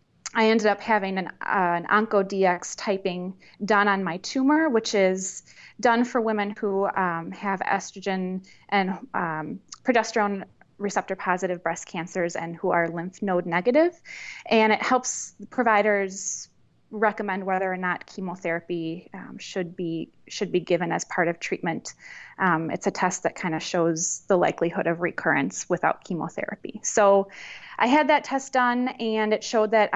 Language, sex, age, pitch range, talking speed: English, female, 20-39, 180-215 Hz, 155 wpm